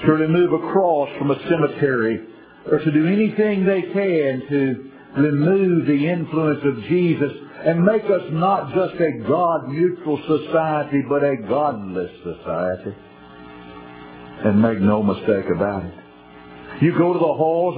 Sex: male